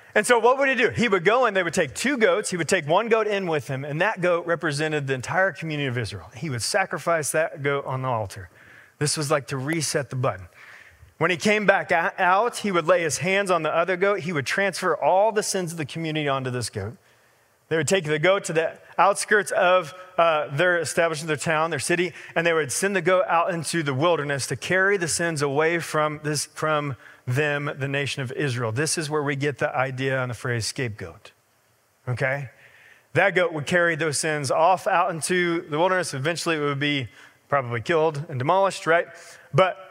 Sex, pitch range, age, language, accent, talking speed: male, 140-180 Hz, 30-49, English, American, 220 wpm